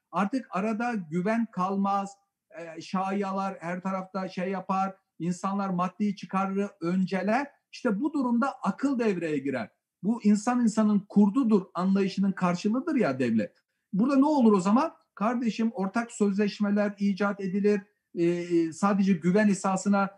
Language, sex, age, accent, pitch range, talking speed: Turkish, male, 50-69, native, 180-225 Hz, 120 wpm